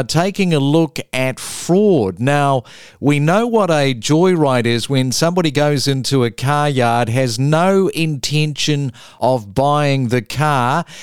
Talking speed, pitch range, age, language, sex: 140 wpm, 135-170 Hz, 50-69, English, male